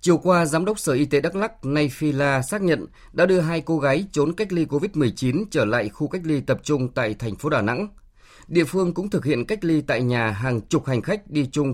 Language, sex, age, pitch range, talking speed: Vietnamese, male, 20-39, 120-165 Hz, 255 wpm